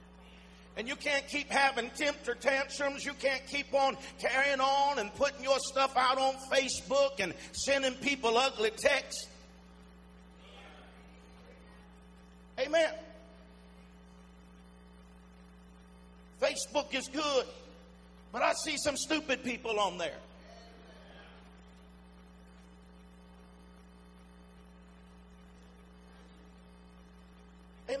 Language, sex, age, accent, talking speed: English, male, 50-69, American, 80 wpm